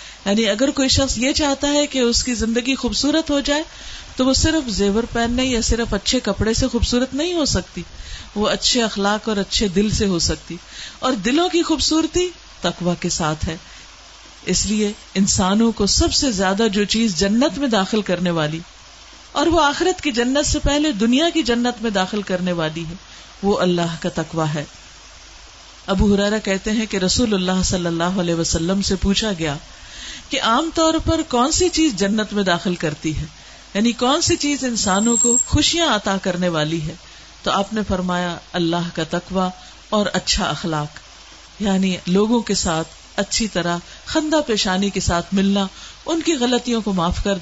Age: 50-69